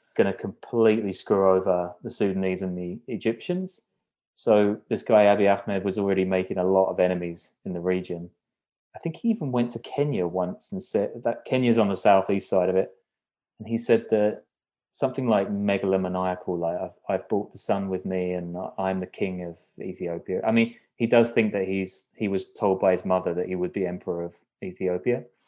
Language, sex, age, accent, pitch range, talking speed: English, male, 20-39, British, 90-110 Hz, 195 wpm